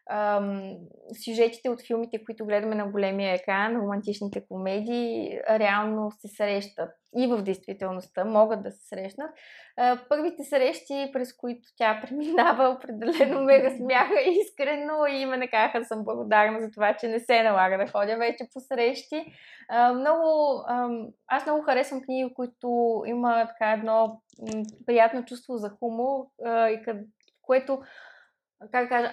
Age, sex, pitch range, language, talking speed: 20-39, female, 210-255 Hz, Bulgarian, 125 wpm